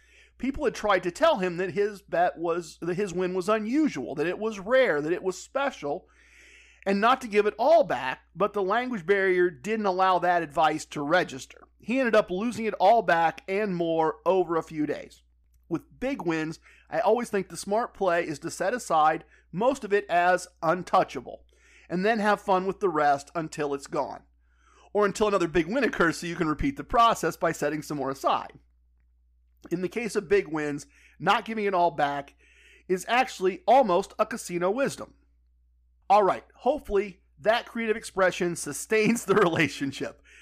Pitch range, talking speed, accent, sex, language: 160-210 Hz, 185 wpm, American, male, English